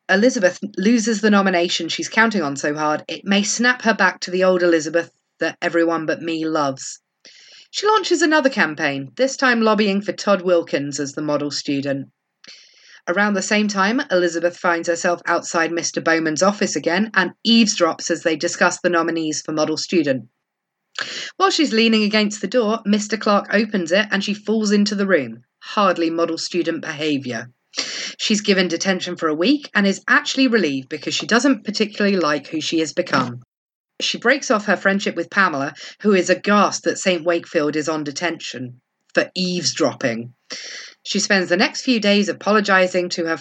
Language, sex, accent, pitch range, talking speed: English, female, British, 165-215 Hz, 175 wpm